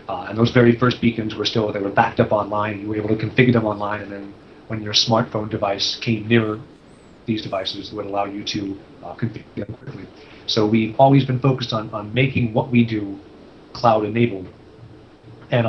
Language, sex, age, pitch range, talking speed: English, male, 30-49, 105-120 Hz, 195 wpm